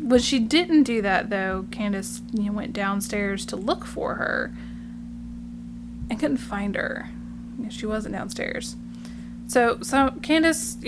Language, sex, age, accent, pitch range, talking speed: English, female, 10-29, American, 195-245 Hz, 150 wpm